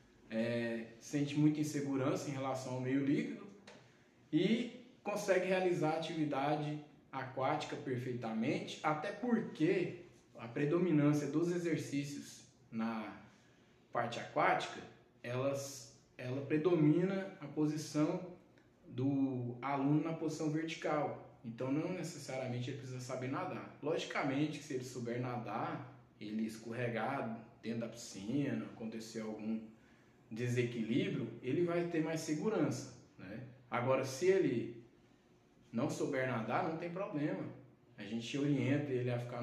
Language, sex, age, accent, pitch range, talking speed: Portuguese, male, 20-39, Brazilian, 120-155 Hz, 115 wpm